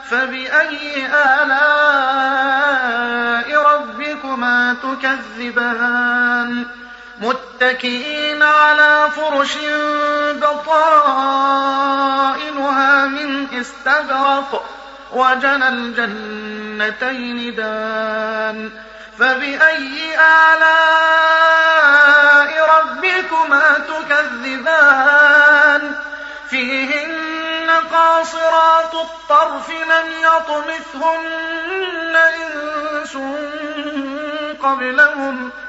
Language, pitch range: Arabic, 245-300 Hz